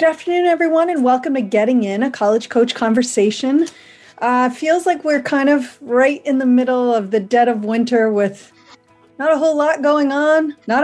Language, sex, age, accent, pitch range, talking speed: English, female, 40-59, American, 205-280 Hz, 195 wpm